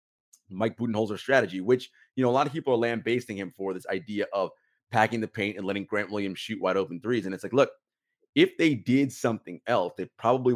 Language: English